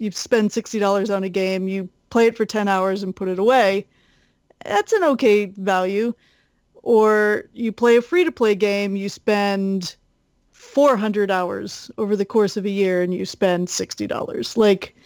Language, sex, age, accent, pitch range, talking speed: English, female, 30-49, American, 195-230 Hz, 165 wpm